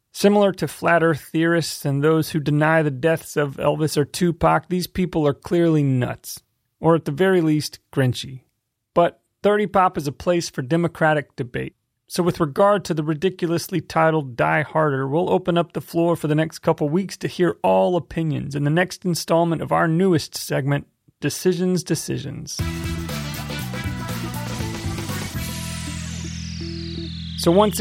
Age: 30-49